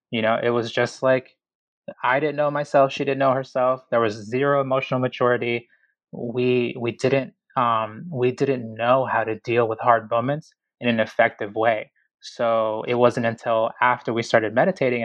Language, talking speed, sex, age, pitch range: English, 175 wpm, male, 20-39, 115-135 Hz